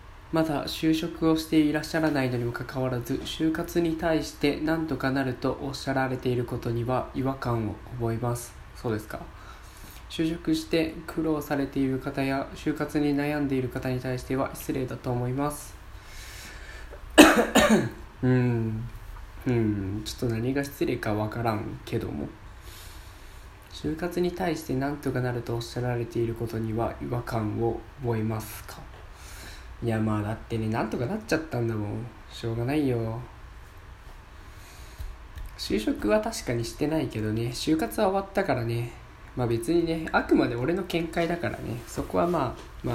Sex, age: male, 20-39